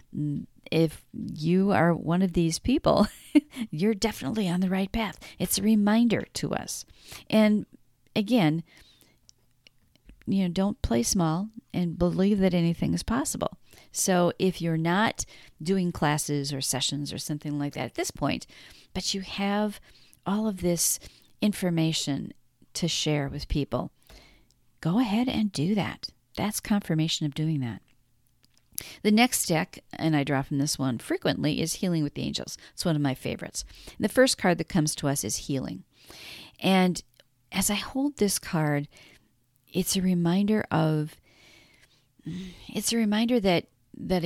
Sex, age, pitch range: female, 40-59, 145-205 Hz